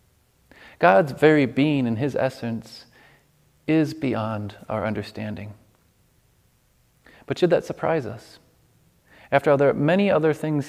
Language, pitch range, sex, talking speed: English, 120-150 Hz, male, 125 wpm